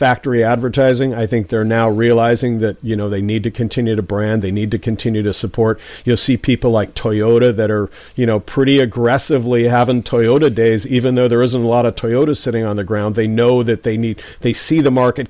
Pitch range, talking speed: 110-130 Hz, 225 wpm